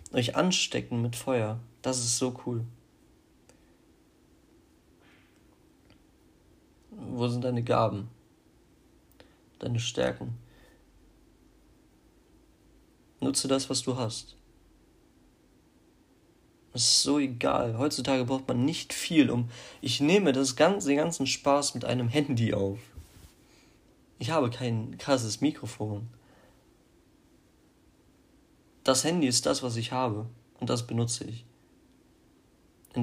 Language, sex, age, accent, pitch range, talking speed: German, male, 40-59, German, 115-130 Hz, 100 wpm